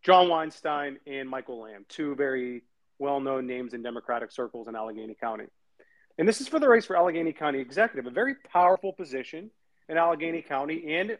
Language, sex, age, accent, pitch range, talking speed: English, male, 30-49, American, 140-200 Hz, 175 wpm